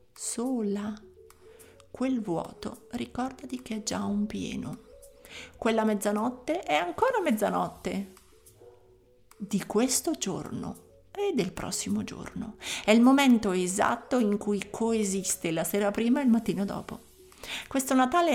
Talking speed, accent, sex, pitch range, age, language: 125 wpm, native, female, 205-260 Hz, 50-69, Italian